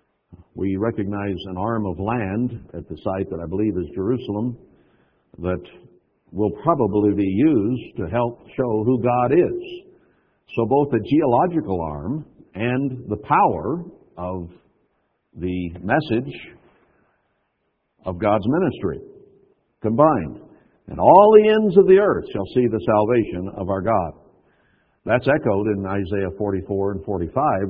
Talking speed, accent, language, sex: 130 wpm, American, English, male